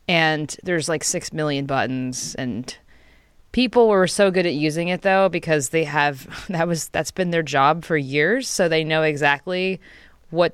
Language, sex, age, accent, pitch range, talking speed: English, female, 20-39, American, 150-185 Hz, 175 wpm